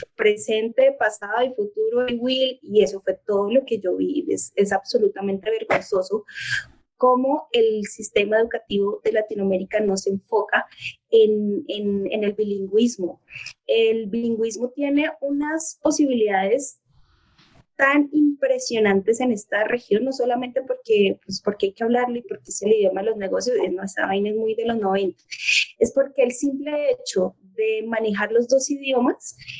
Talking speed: 150 wpm